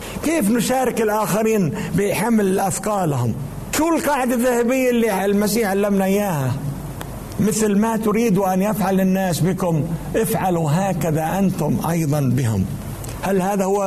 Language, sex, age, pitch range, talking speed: Arabic, male, 60-79, 165-220 Hz, 115 wpm